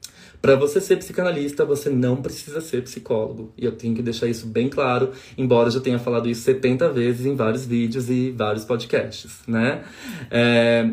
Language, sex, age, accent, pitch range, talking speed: Portuguese, male, 20-39, Brazilian, 125-195 Hz, 180 wpm